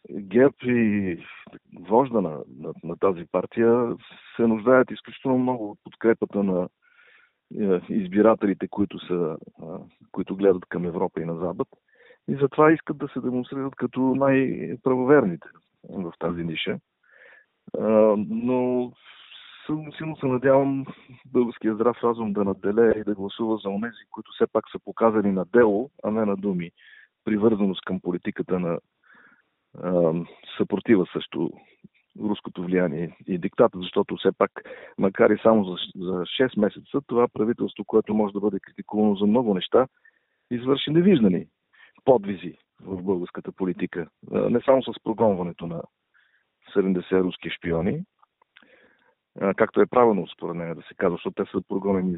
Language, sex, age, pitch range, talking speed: Bulgarian, male, 40-59, 95-125 Hz, 140 wpm